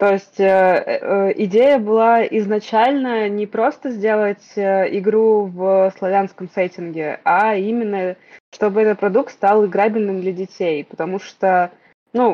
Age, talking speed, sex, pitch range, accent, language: 20-39, 115 wpm, female, 185-220 Hz, native, Russian